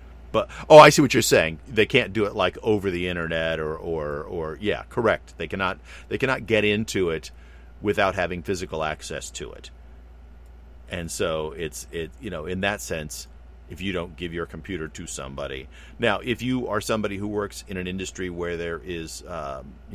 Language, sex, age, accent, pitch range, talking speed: English, male, 50-69, American, 70-85 Hz, 195 wpm